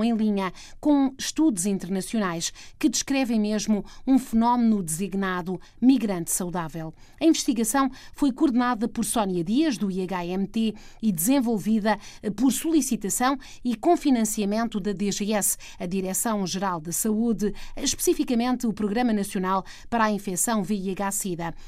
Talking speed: 120 wpm